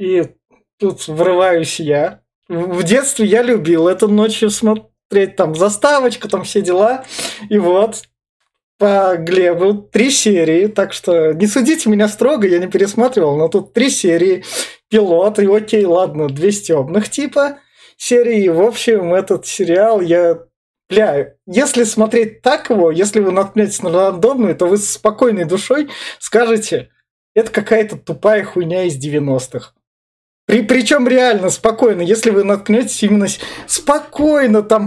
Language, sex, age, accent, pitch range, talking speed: Russian, male, 20-39, native, 180-230 Hz, 140 wpm